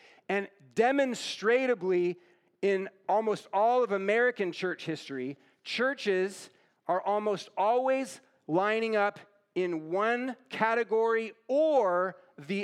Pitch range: 180-235 Hz